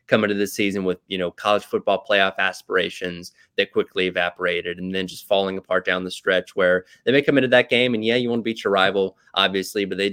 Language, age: English, 20-39